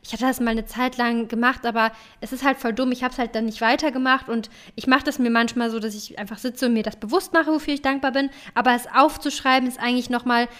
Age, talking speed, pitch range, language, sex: 10-29, 265 wpm, 230-270 Hz, German, female